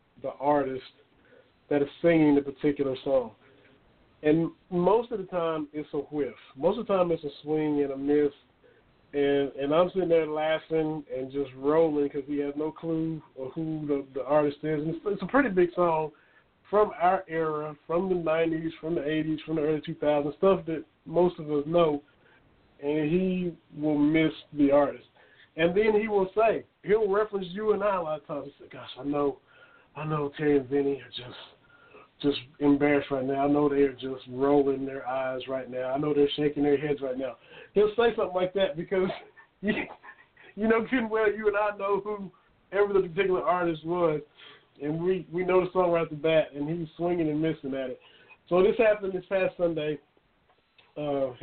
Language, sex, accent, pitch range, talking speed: English, male, American, 145-180 Hz, 195 wpm